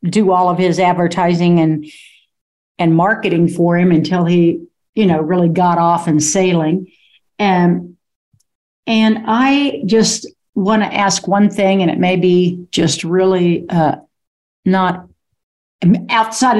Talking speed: 135 wpm